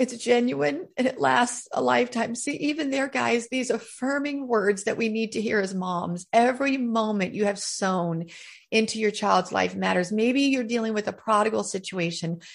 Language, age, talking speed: English, 40-59, 180 wpm